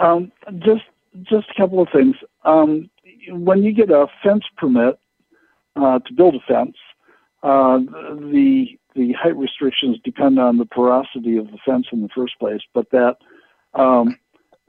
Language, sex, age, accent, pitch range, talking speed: English, male, 60-79, American, 115-150 Hz, 155 wpm